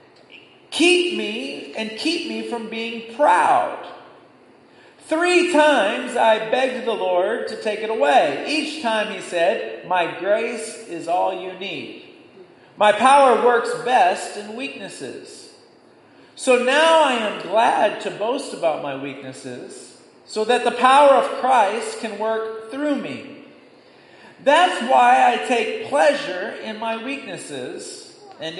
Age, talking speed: 40-59, 130 wpm